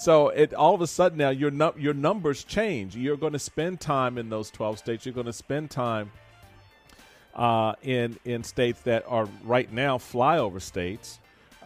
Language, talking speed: English, 185 wpm